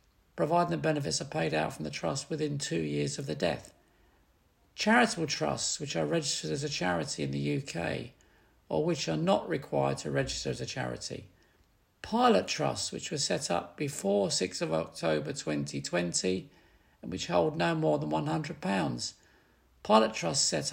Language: English